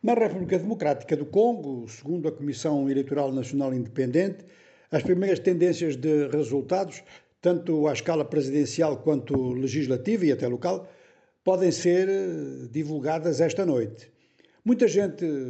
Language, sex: Portuguese, male